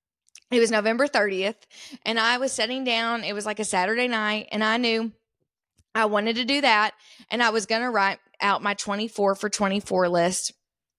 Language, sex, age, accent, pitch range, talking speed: English, female, 20-39, American, 205-250 Hz, 190 wpm